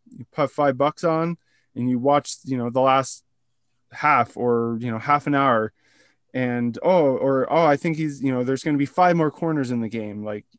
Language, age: English, 20-39